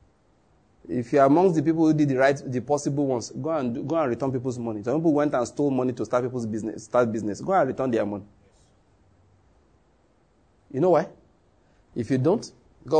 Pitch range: 110-165 Hz